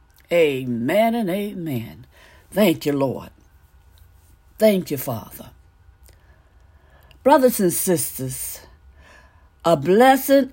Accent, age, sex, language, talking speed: American, 60-79, female, English, 80 wpm